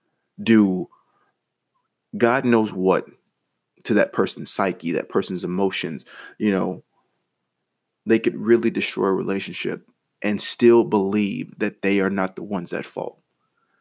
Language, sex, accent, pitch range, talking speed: English, male, American, 95-110 Hz, 130 wpm